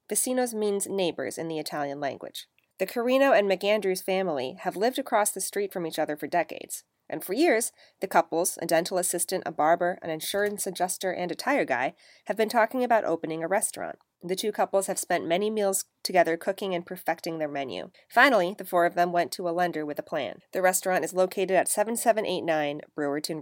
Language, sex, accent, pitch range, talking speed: English, female, American, 165-200 Hz, 200 wpm